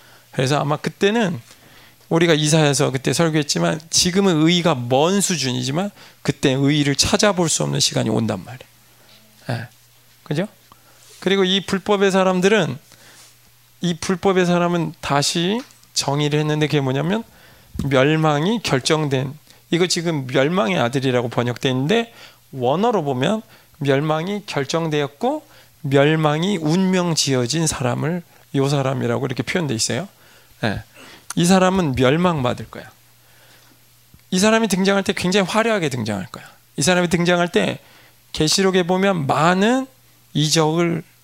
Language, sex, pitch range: Korean, male, 130-180 Hz